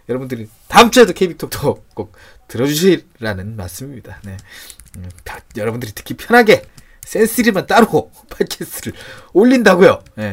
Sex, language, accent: male, Korean, native